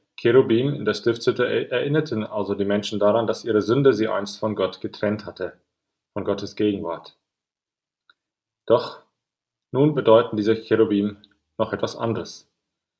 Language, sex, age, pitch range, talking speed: English, male, 30-49, 100-115 Hz, 135 wpm